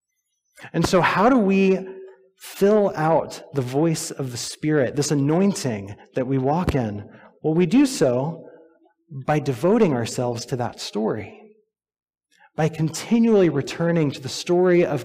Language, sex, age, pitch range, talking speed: English, male, 30-49, 140-190 Hz, 140 wpm